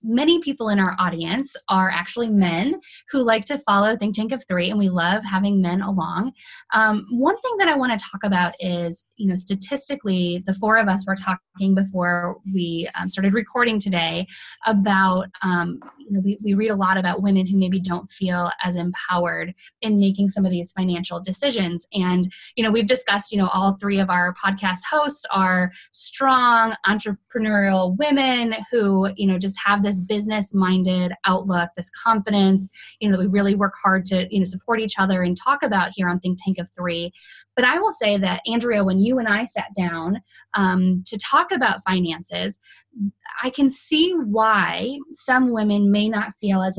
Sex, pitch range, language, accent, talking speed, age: female, 185-225 Hz, English, American, 190 wpm, 20-39